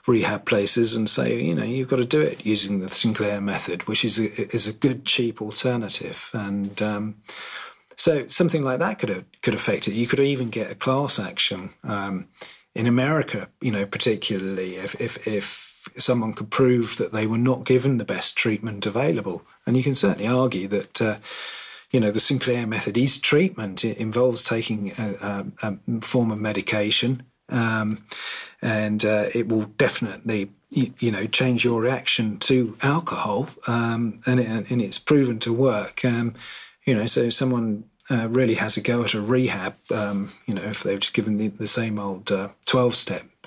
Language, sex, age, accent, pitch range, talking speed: English, male, 40-59, British, 105-130 Hz, 185 wpm